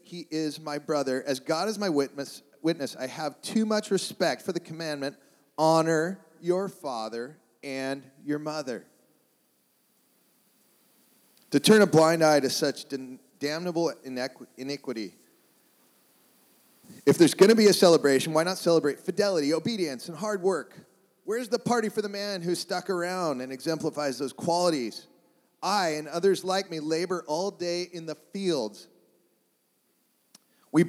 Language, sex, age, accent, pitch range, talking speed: English, male, 40-59, American, 135-180 Hz, 140 wpm